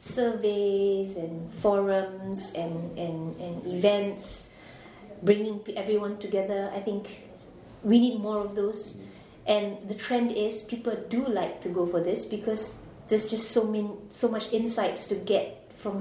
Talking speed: 145 wpm